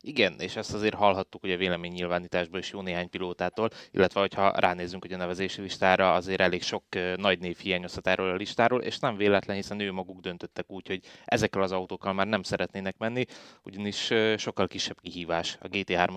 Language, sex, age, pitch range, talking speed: Hungarian, male, 20-39, 95-110 Hz, 190 wpm